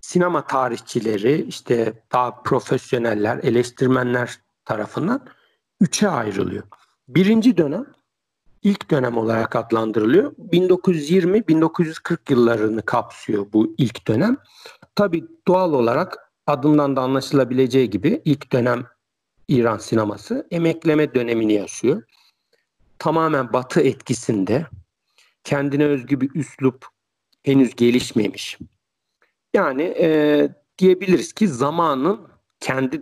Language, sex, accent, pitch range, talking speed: Turkish, male, native, 120-170 Hz, 90 wpm